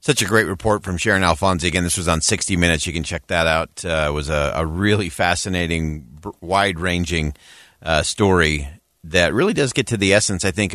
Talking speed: 205 wpm